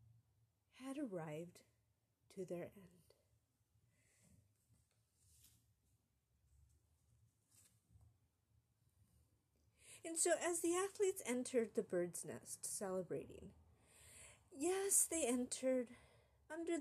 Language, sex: English, female